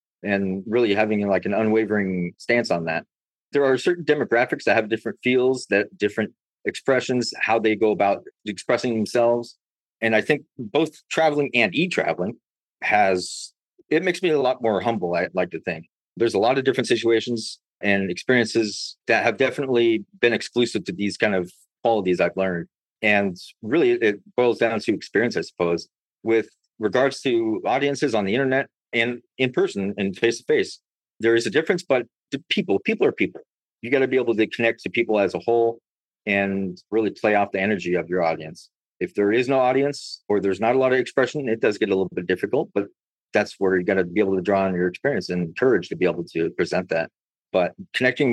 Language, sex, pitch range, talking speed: English, male, 100-130 Hz, 195 wpm